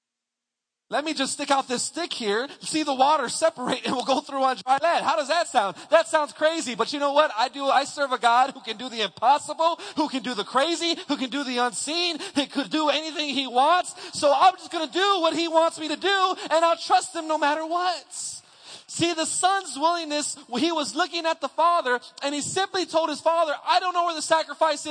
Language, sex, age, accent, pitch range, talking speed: English, male, 30-49, American, 270-335 Hz, 235 wpm